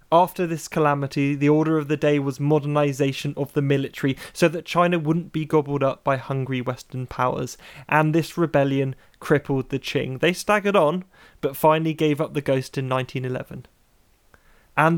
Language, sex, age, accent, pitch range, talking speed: English, male, 20-39, British, 140-165 Hz, 170 wpm